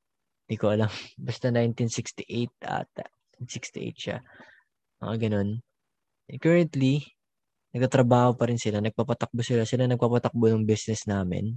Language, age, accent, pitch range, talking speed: Filipino, 20-39, native, 105-130 Hz, 110 wpm